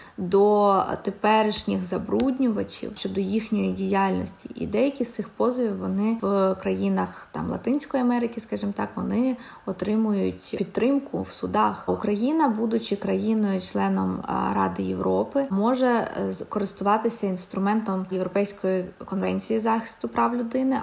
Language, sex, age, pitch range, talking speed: Ukrainian, female, 20-39, 190-235 Hz, 105 wpm